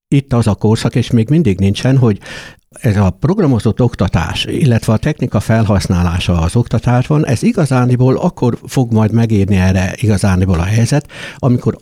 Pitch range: 105-140 Hz